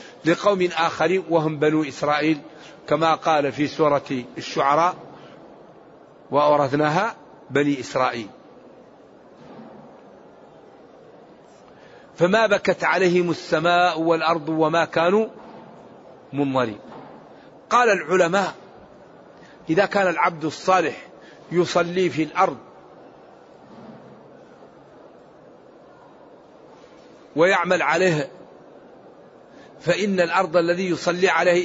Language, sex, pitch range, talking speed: Arabic, male, 160-190 Hz, 70 wpm